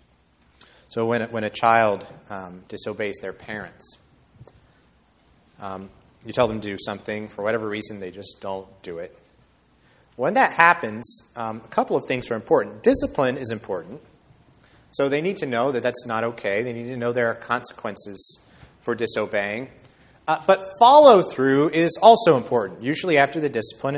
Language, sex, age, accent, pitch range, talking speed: English, male, 30-49, American, 100-130 Hz, 160 wpm